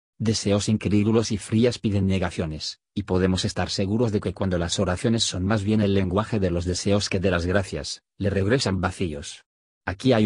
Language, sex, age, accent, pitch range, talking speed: Spanish, male, 40-59, Spanish, 90-110 Hz, 185 wpm